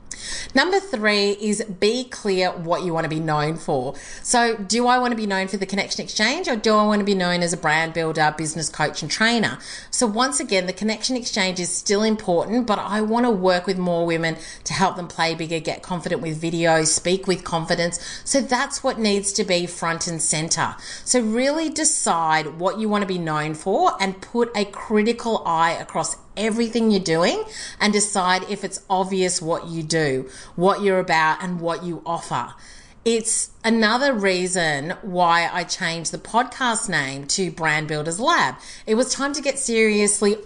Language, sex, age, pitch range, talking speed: English, female, 30-49, 170-225 Hz, 195 wpm